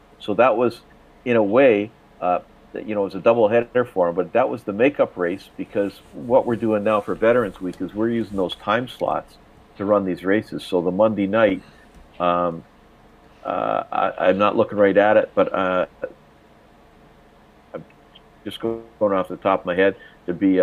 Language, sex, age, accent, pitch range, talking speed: English, male, 50-69, American, 85-105 Hz, 190 wpm